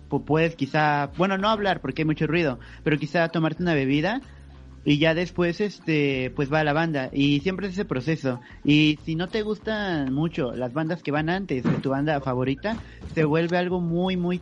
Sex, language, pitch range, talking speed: male, Spanish, 140-170 Hz, 200 wpm